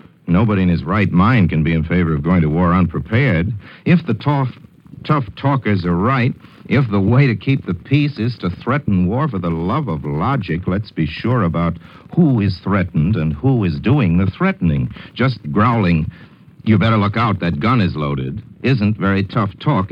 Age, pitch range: 60-79, 90-125 Hz